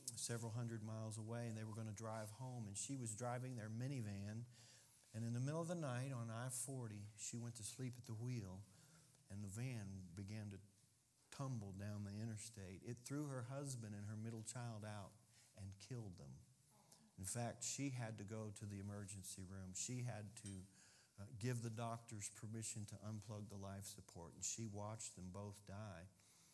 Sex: male